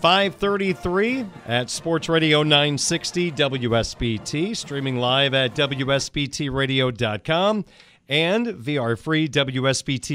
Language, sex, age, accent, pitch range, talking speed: English, male, 40-59, American, 135-170 Hz, 75 wpm